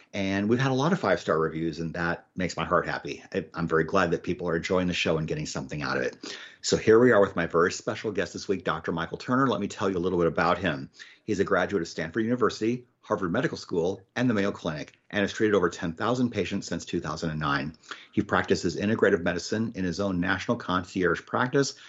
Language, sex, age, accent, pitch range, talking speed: English, male, 40-59, American, 85-120 Hz, 230 wpm